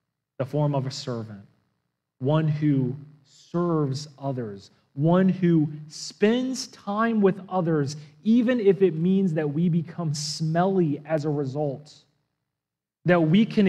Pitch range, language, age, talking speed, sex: 130-160 Hz, English, 30-49, 125 wpm, male